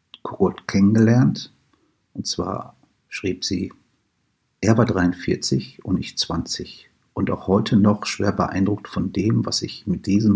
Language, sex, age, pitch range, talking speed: German, male, 50-69, 95-115 Hz, 140 wpm